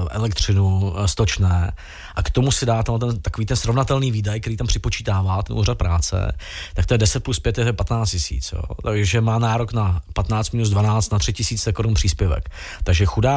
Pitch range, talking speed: 100-115 Hz, 195 wpm